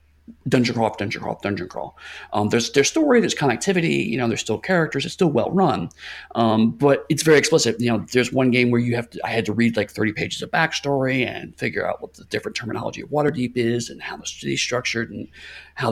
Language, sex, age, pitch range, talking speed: English, male, 40-59, 110-140 Hz, 240 wpm